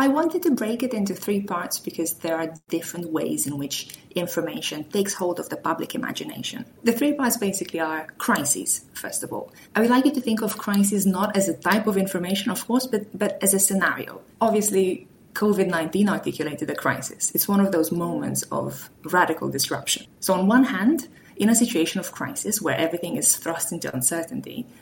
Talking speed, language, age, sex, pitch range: 195 wpm, English, 20-39, female, 165-220 Hz